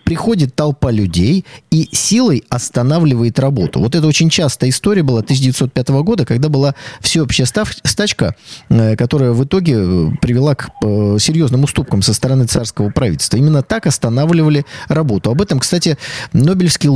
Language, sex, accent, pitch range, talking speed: Russian, male, native, 120-155 Hz, 135 wpm